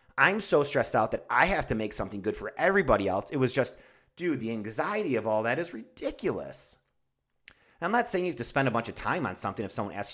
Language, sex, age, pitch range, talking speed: English, male, 30-49, 105-135 Hz, 245 wpm